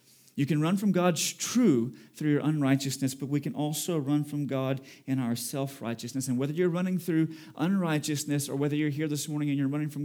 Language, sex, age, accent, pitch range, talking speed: English, male, 30-49, American, 135-165 Hz, 210 wpm